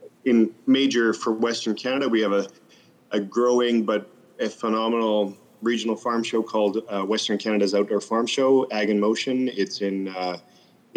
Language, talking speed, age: English, 160 wpm, 30-49